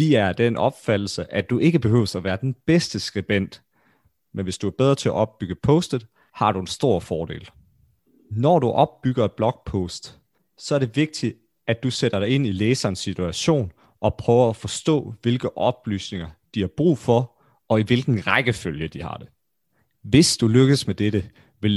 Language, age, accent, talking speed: Danish, 30-49, native, 180 wpm